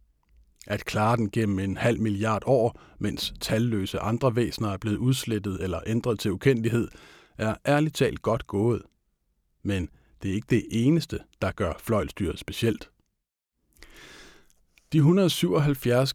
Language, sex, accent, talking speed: Danish, male, native, 135 wpm